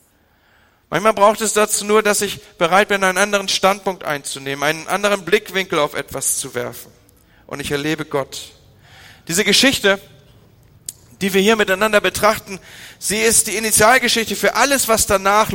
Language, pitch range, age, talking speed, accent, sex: German, 160-210 Hz, 40-59, 150 wpm, German, male